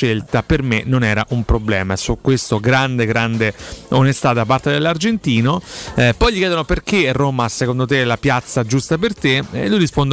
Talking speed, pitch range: 180 wpm, 120-155 Hz